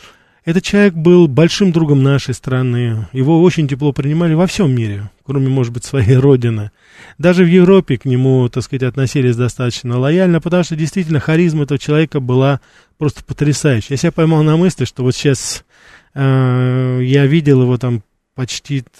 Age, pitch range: 20-39, 125-150 Hz